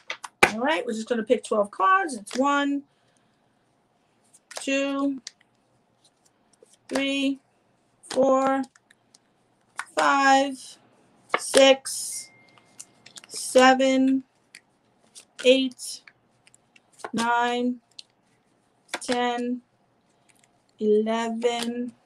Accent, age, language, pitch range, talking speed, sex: American, 40-59, English, 245-285 Hz, 40 wpm, female